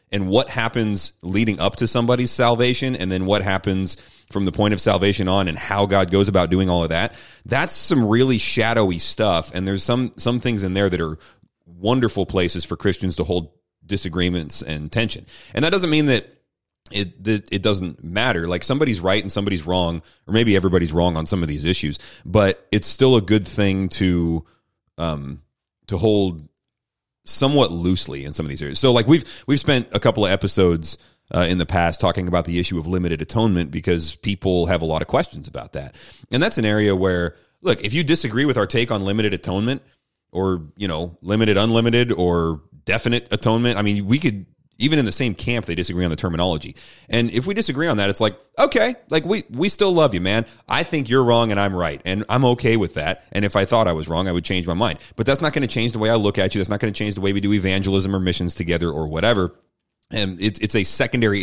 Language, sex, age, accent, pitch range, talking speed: English, male, 30-49, American, 90-115 Hz, 225 wpm